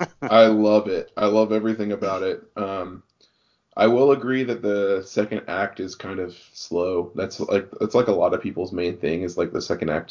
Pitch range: 95-110 Hz